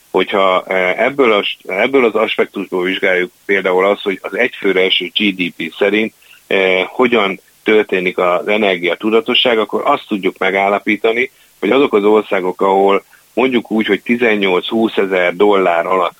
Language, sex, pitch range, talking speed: Hungarian, male, 90-105 Hz, 135 wpm